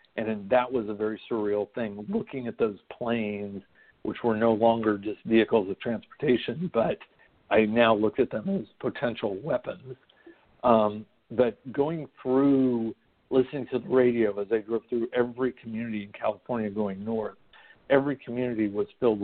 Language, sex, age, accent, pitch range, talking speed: English, male, 60-79, American, 105-125 Hz, 160 wpm